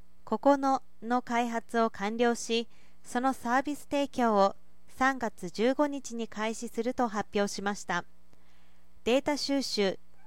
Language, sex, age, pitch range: Japanese, female, 40-59, 195-260 Hz